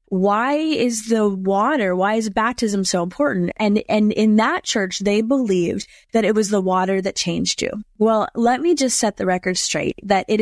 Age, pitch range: 20-39, 195-245 Hz